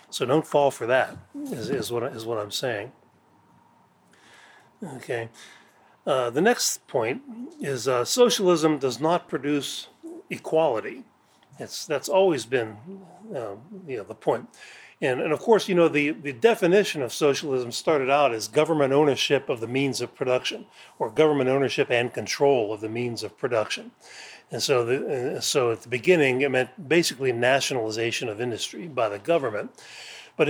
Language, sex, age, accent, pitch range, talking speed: English, male, 40-59, American, 125-160 Hz, 155 wpm